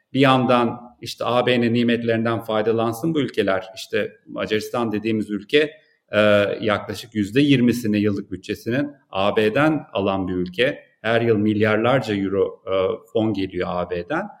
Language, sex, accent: Turkish, male, native